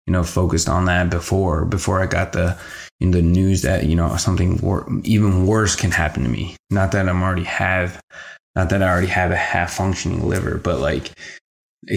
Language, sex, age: English, male, 20-39